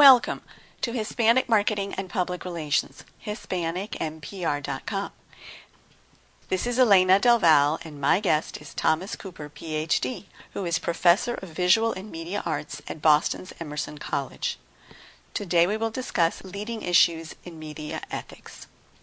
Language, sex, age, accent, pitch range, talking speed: English, female, 50-69, American, 160-205 Hz, 125 wpm